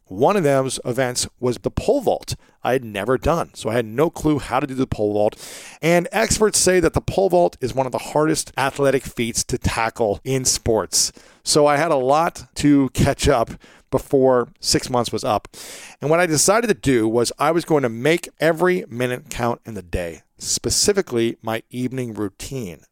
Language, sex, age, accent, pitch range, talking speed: English, male, 40-59, American, 120-150 Hz, 200 wpm